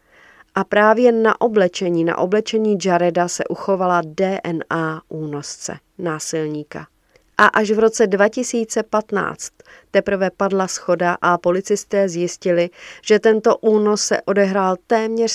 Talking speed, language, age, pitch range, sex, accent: 115 wpm, Czech, 40-59, 170-210 Hz, female, native